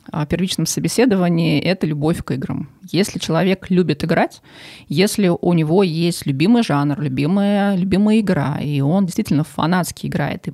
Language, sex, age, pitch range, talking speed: Russian, female, 20-39, 155-200 Hz, 150 wpm